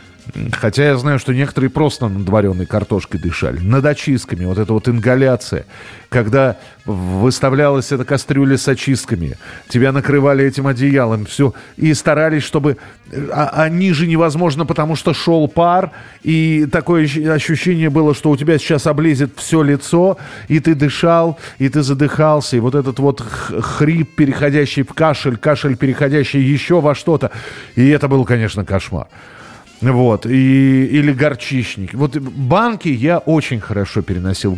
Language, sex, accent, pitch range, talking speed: Russian, male, native, 125-160 Hz, 145 wpm